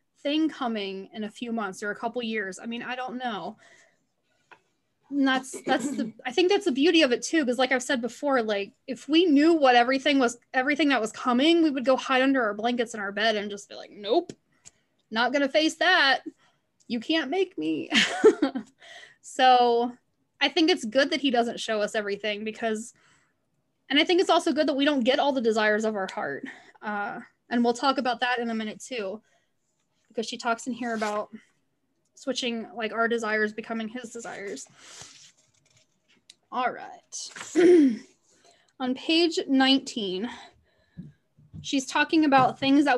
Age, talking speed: 10-29, 175 wpm